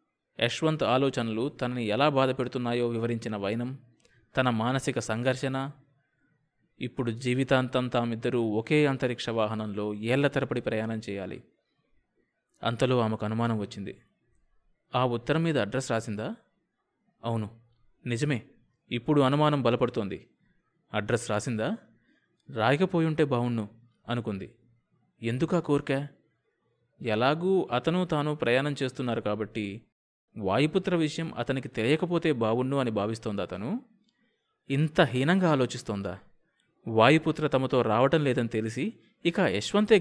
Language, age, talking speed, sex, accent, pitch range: Telugu, 20-39, 95 wpm, male, native, 115-145 Hz